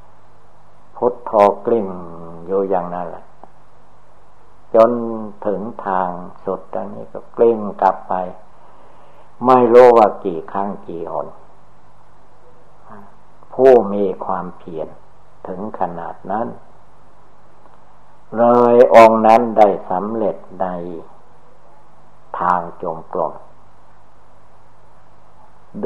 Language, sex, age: Thai, male, 60-79